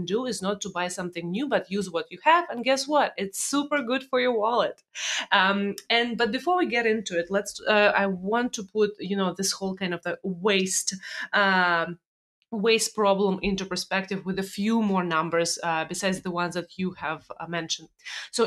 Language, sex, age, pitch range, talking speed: English, female, 30-49, 175-215 Hz, 205 wpm